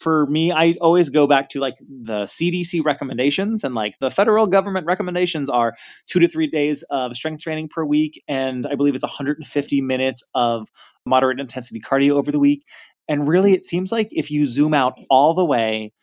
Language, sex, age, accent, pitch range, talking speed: English, male, 20-39, American, 125-165 Hz, 195 wpm